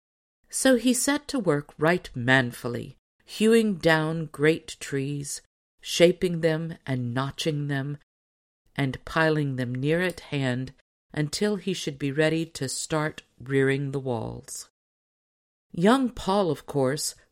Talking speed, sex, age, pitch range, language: 125 wpm, female, 50-69, 130-170 Hz, English